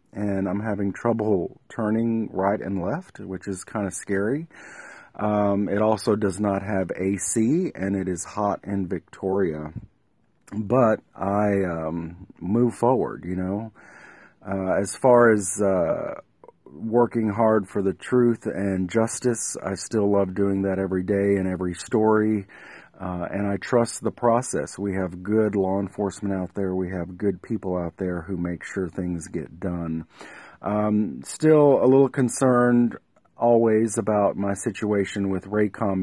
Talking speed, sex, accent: 150 wpm, male, American